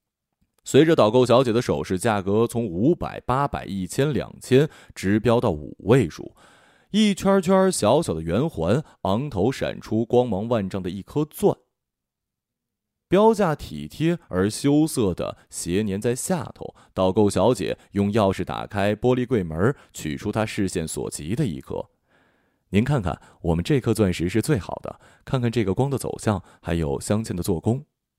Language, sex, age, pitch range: Chinese, male, 30-49, 95-135 Hz